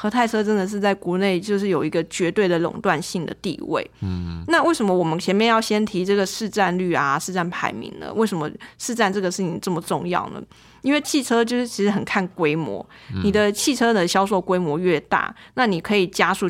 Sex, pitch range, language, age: female, 175-215 Hz, Chinese, 20-39